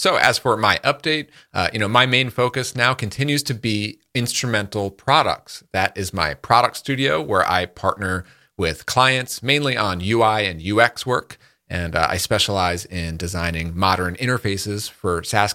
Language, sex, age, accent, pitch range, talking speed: English, male, 40-59, American, 90-115 Hz, 165 wpm